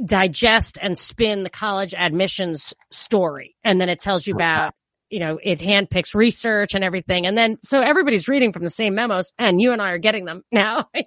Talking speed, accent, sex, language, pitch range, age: 205 wpm, American, female, English, 185-245 Hz, 30-49